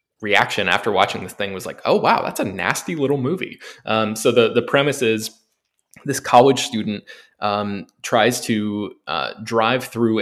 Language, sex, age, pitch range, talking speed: English, male, 20-39, 105-125 Hz, 170 wpm